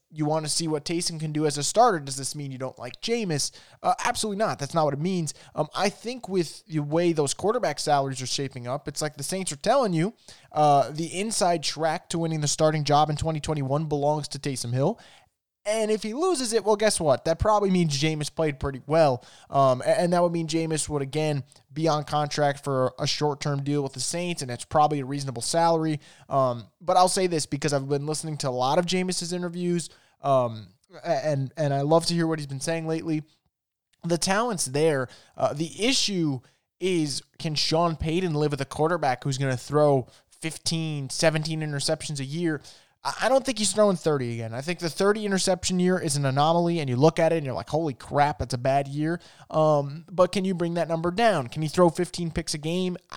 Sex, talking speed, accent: male, 220 wpm, American